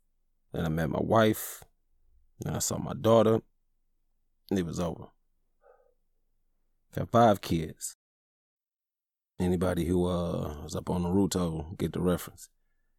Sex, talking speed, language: male, 125 wpm, English